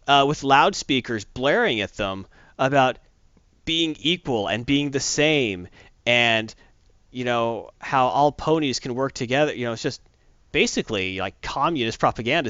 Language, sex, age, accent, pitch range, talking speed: English, male, 30-49, American, 95-145 Hz, 145 wpm